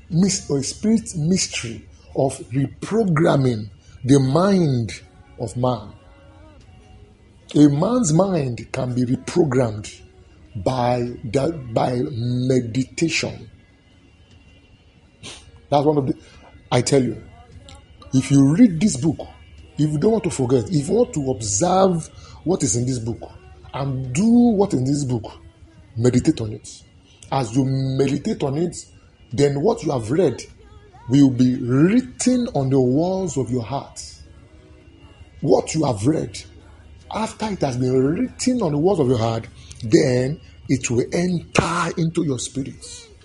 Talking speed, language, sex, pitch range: 135 wpm, English, male, 105-150 Hz